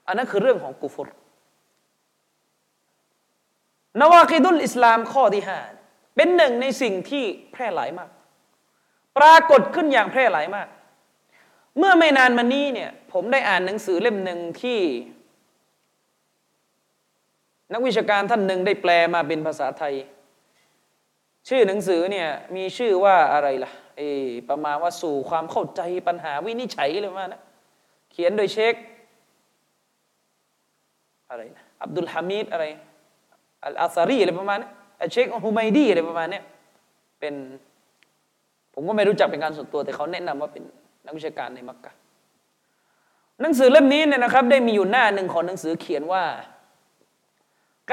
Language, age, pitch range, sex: Thai, 30-49, 170-255 Hz, male